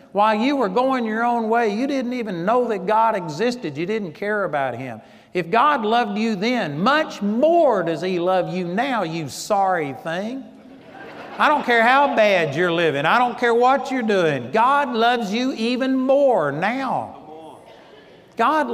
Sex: male